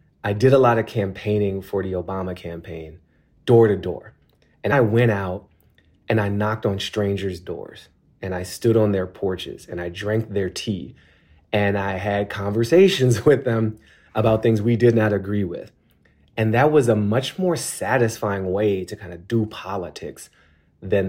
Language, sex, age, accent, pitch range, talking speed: English, male, 30-49, American, 95-115 Hz, 175 wpm